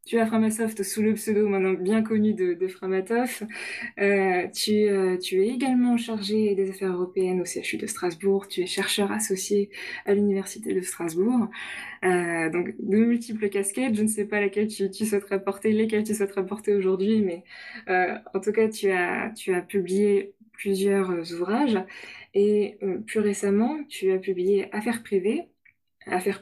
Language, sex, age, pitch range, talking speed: French, female, 20-39, 185-215 Hz, 170 wpm